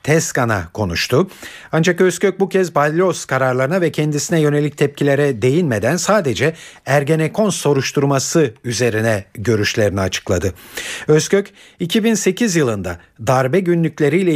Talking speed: 100 wpm